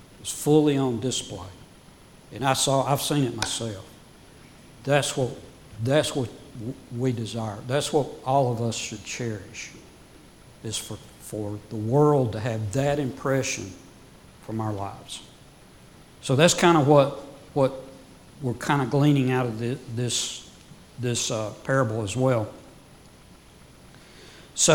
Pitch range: 115-150 Hz